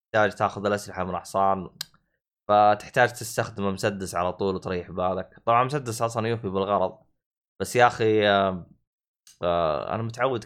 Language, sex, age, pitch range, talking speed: Arabic, male, 20-39, 95-130 Hz, 125 wpm